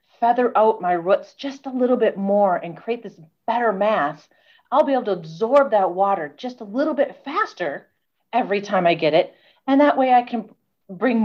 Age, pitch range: 40-59, 170-220 Hz